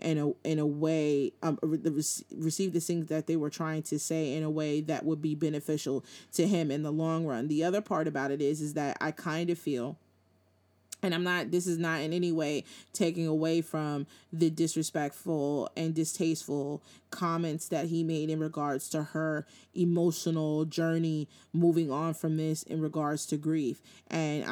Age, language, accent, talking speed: 30-49, English, American, 185 wpm